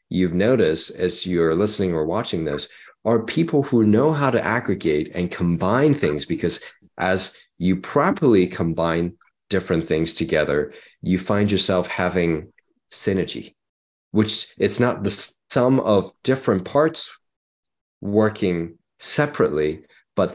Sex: male